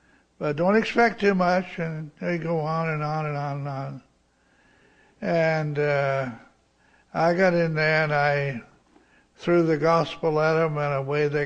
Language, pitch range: English, 145-170 Hz